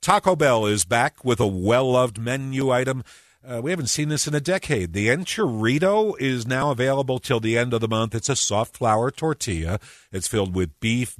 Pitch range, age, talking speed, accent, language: 100-130 Hz, 50-69, 200 wpm, American, English